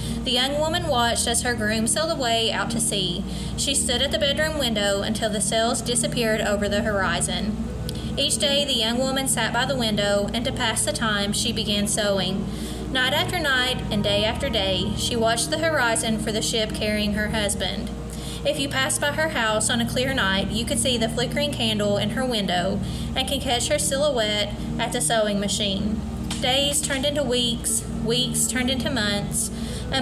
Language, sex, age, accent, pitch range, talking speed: English, female, 20-39, American, 210-250 Hz, 190 wpm